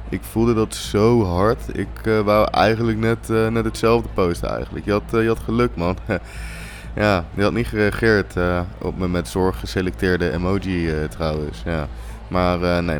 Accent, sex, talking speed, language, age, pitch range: Dutch, male, 185 wpm, Dutch, 20-39, 85-110 Hz